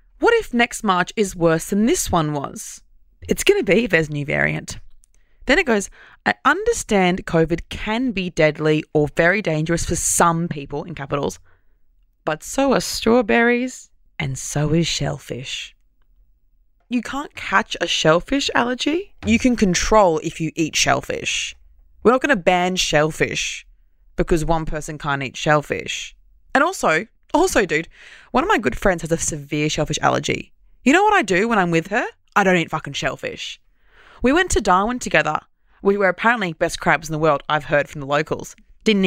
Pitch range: 155-235 Hz